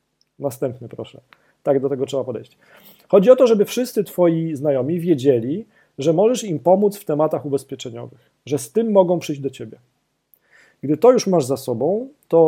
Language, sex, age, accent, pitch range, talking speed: Polish, male, 40-59, native, 130-175 Hz, 175 wpm